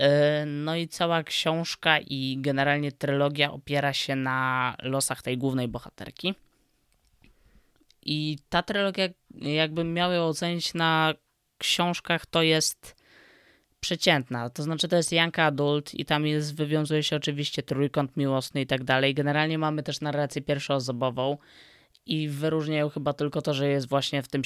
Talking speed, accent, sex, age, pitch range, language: 140 wpm, native, female, 20-39, 130-155 Hz, Polish